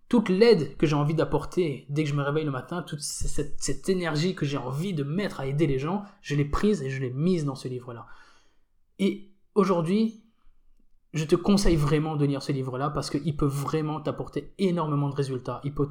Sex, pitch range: male, 140-170 Hz